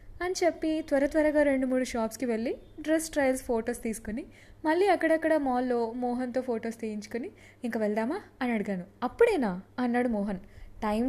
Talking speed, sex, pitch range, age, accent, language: 140 wpm, female, 195-280 Hz, 20-39, native, Telugu